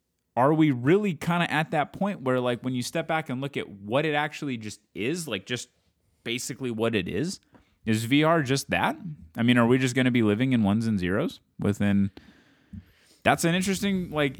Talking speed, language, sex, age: 210 wpm, English, male, 20-39